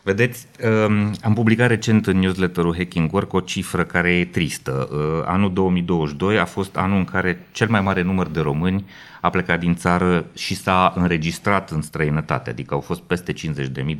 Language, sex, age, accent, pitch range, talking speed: Romanian, male, 30-49, native, 80-100 Hz, 170 wpm